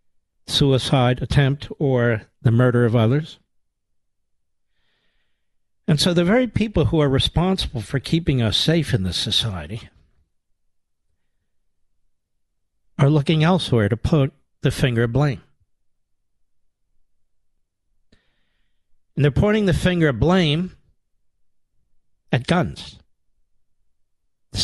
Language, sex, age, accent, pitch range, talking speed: English, male, 60-79, American, 90-145 Hz, 100 wpm